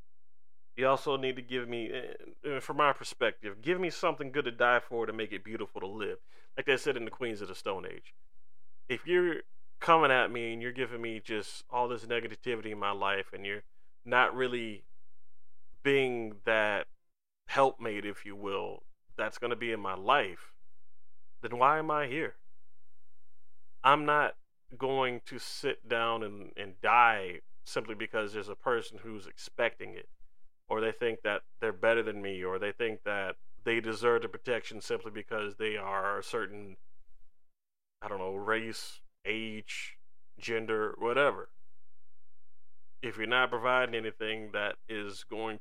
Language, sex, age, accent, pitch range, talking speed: English, male, 30-49, American, 105-135 Hz, 165 wpm